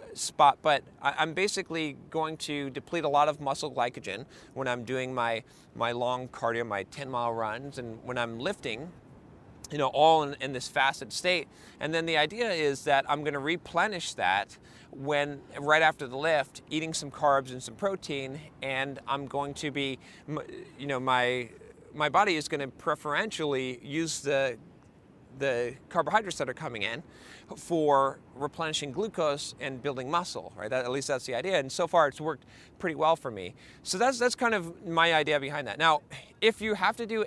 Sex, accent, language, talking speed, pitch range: male, American, English, 185 wpm, 135-170 Hz